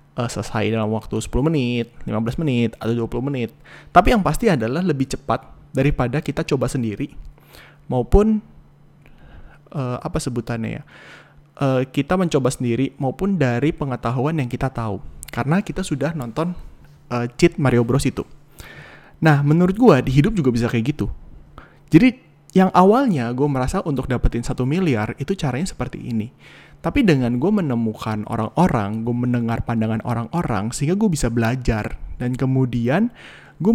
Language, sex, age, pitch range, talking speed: Indonesian, male, 20-39, 115-155 Hz, 150 wpm